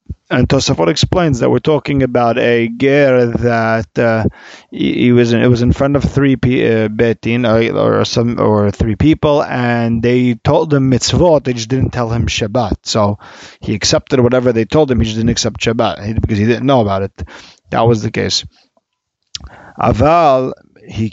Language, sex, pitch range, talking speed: English, male, 115-135 Hz, 180 wpm